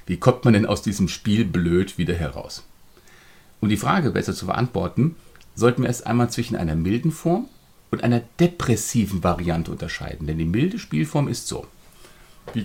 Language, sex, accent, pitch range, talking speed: German, male, German, 100-140 Hz, 170 wpm